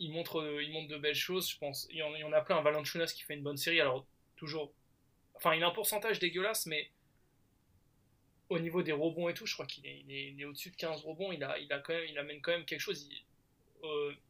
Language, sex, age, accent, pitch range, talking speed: French, male, 20-39, French, 135-160 Hz, 270 wpm